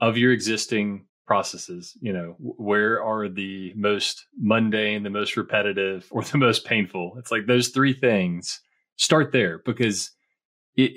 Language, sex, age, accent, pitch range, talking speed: English, male, 30-49, American, 100-125 Hz, 150 wpm